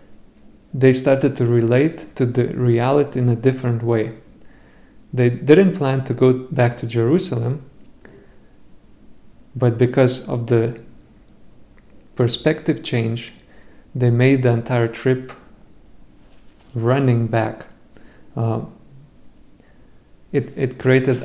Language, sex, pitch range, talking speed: English, male, 120-135 Hz, 100 wpm